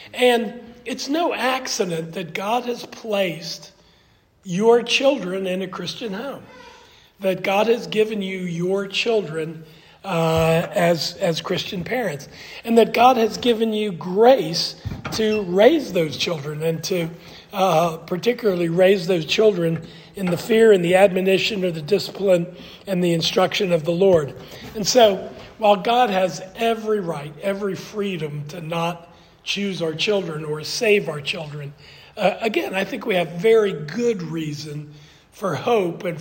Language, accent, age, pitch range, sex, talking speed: English, American, 40-59, 170-215 Hz, male, 145 wpm